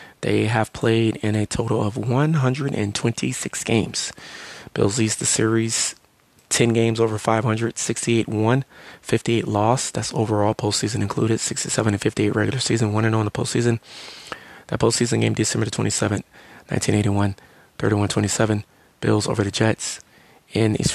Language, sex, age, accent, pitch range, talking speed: English, male, 30-49, American, 105-120 Hz, 125 wpm